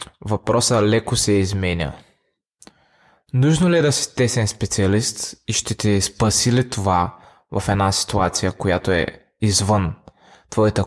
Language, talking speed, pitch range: Bulgarian, 125 wpm, 100-135 Hz